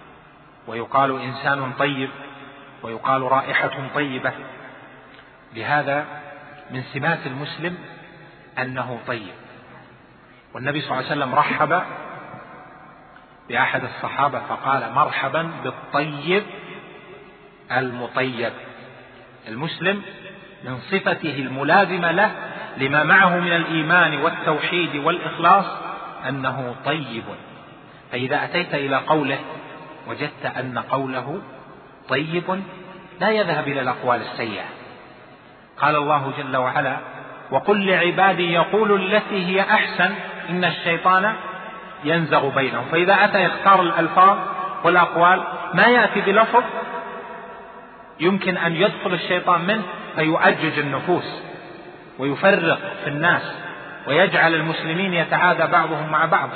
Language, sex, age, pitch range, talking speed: Arabic, male, 40-59, 135-185 Hz, 95 wpm